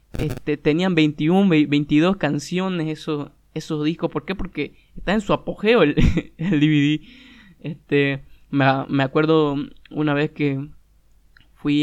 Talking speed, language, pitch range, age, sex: 130 wpm, Spanish, 145-170 Hz, 20-39, male